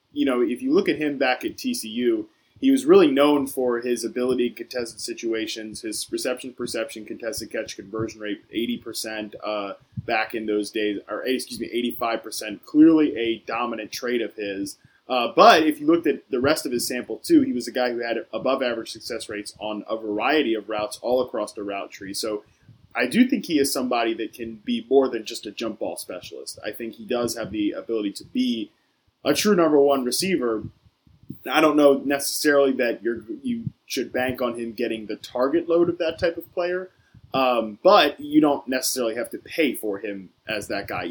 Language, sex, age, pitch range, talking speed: English, male, 20-39, 110-160 Hz, 205 wpm